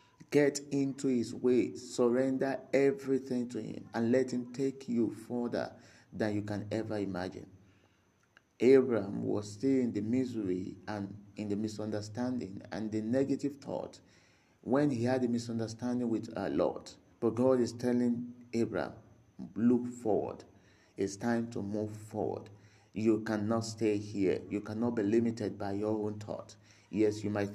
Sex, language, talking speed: male, English, 150 wpm